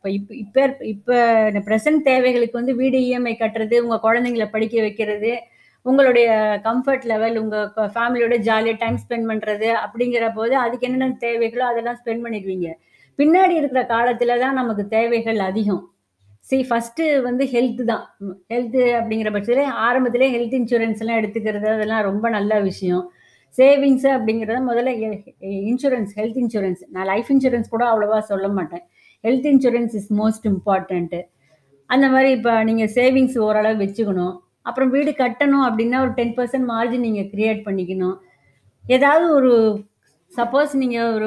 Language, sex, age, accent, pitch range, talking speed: Tamil, female, 20-39, native, 215-250 Hz, 140 wpm